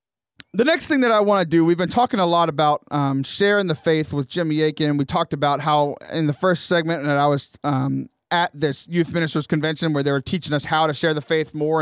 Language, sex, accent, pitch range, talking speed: English, male, American, 145-185 Hz, 250 wpm